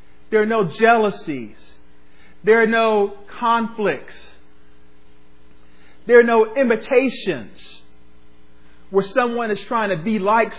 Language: English